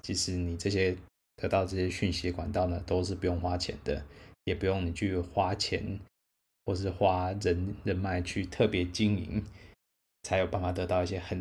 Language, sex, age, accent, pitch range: Chinese, male, 20-39, native, 90-100 Hz